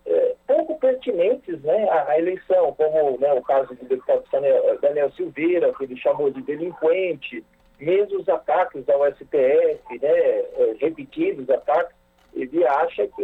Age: 50-69